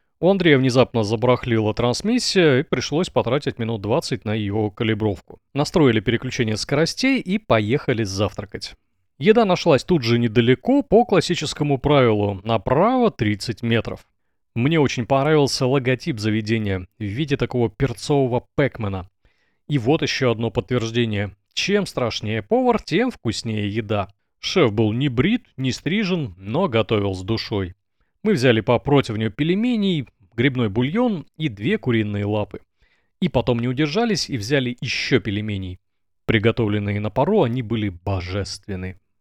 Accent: native